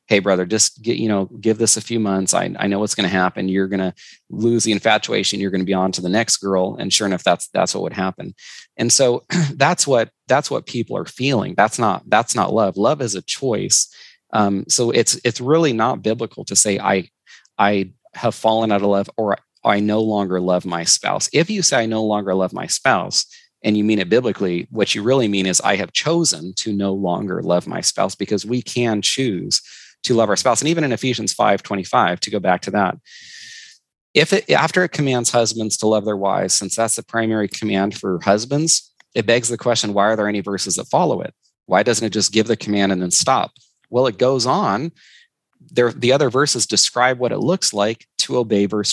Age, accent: 30-49, American